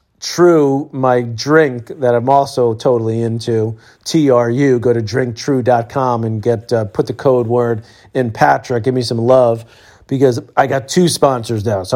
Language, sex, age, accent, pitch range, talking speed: English, male, 40-59, American, 120-140 Hz, 160 wpm